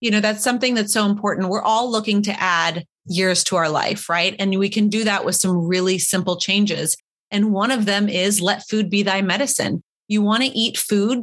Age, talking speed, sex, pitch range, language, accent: 30-49, 225 wpm, female, 185-225 Hz, English, American